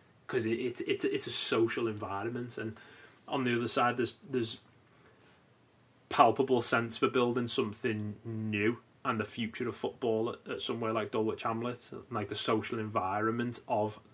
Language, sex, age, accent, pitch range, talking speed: English, male, 20-39, British, 105-120 Hz, 155 wpm